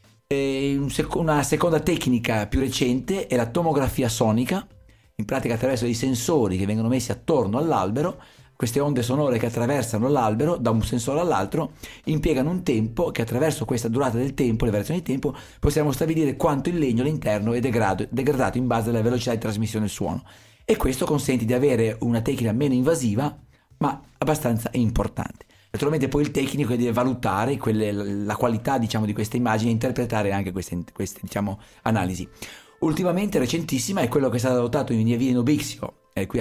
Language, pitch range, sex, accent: Italian, 110-145 Hz, male, native